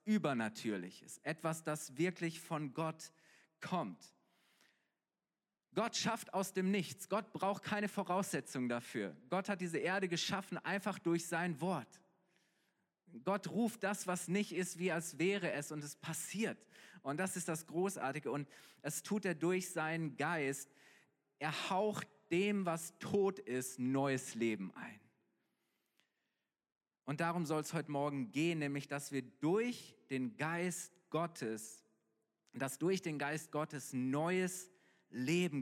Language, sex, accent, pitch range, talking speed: German, male, German, 145-190 Hz, 135 wpm